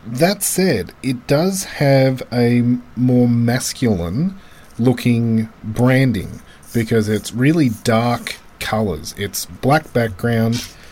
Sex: male